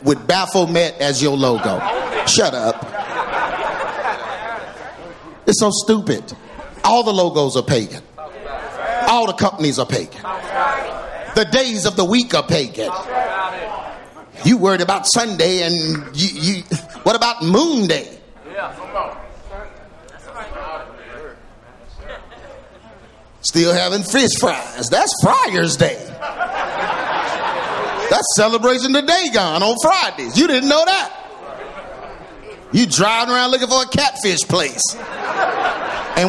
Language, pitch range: English, 170-255 Hz